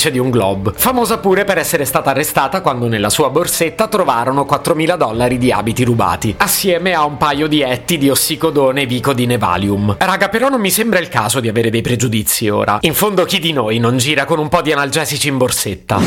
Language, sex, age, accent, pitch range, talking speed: Italian, male, 30-49, native, 125-175 Hz, 210 wpm